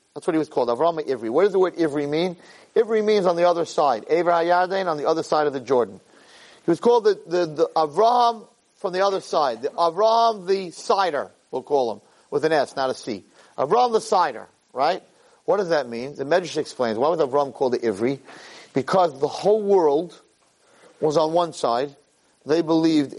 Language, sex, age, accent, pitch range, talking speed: English, male, 40-59, American, 150-210 Hz, 200 wpm